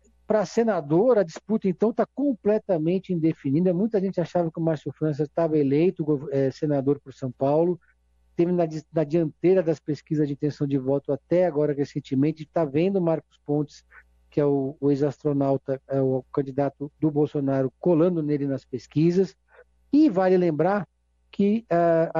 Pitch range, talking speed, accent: 145-175 Hz, 160 wpm, Brazilian